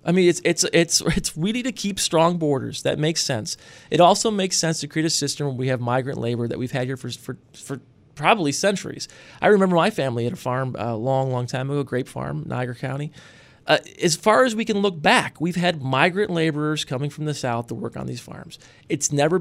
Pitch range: 135-180 Hz